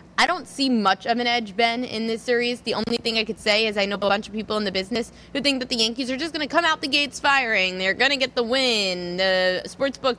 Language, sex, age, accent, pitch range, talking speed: English, female, 20-39, American, 195-260 Hz, 290 wpm